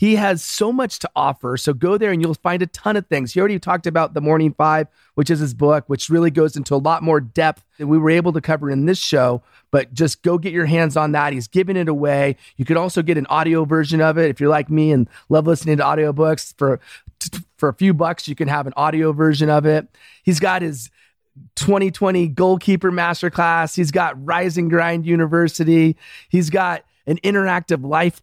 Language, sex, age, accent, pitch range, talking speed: English, male, 30-49, American, 145-175 Hz, 220 wpm